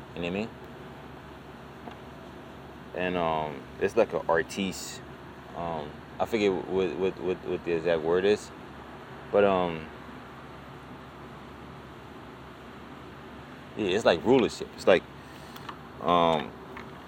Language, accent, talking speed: English, American, 110 wpm